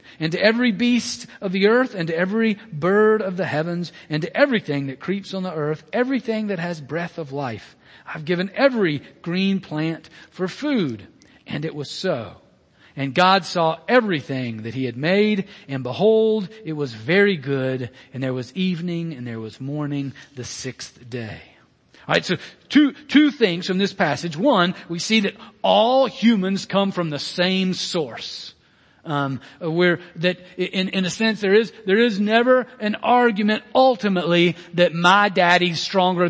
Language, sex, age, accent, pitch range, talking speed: English, male, 40-59, American, 155-210 Hz, 170 wpm